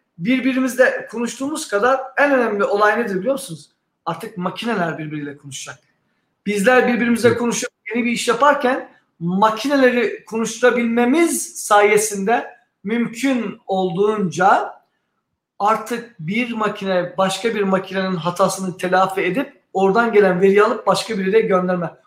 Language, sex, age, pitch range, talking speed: Turkish, male, 50-69, 195-255 Hz, 115 wpm